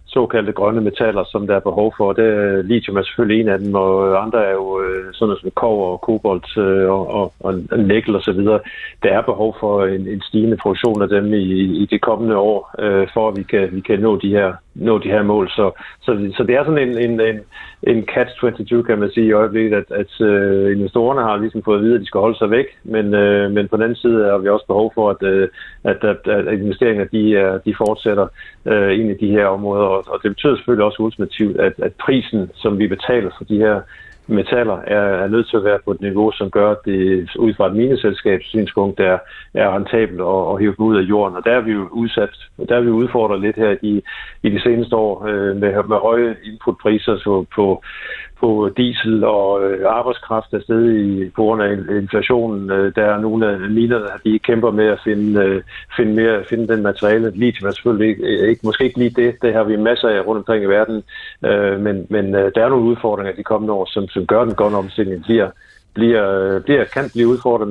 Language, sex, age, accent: Danish, male, 50-69, native